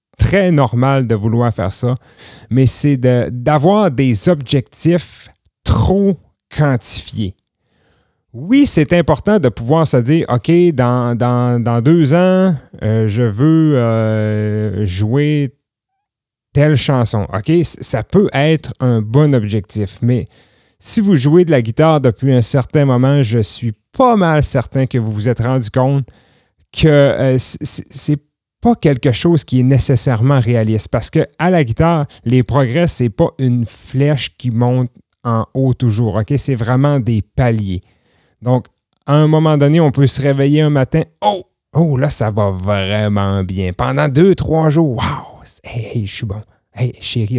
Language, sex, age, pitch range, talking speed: French, male, 30-49, 110-145 Hz, 155 wpm